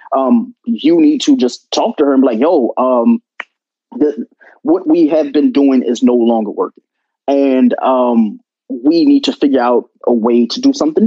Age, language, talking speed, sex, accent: 20-39, English, 185 wpm, male, American